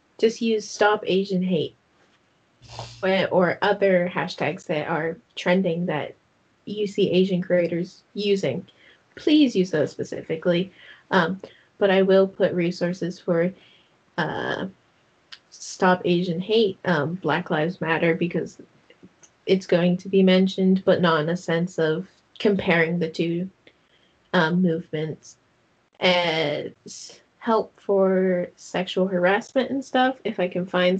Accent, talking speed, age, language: American, 125 wpm, 20-39, English